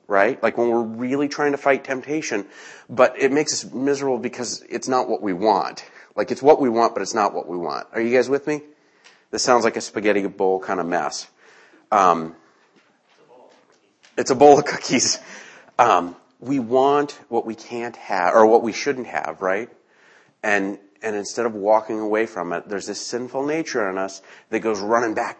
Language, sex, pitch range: English, male, 105-130 Hz